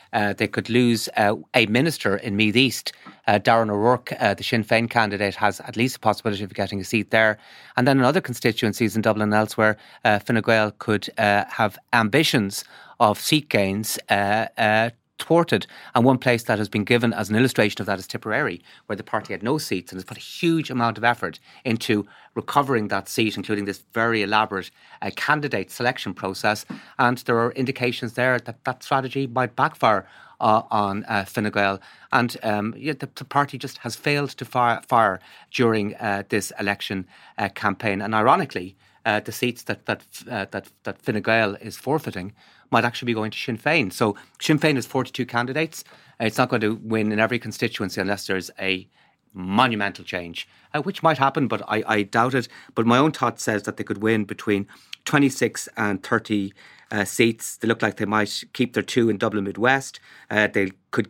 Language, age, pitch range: English, 30-49, 105-125 Hz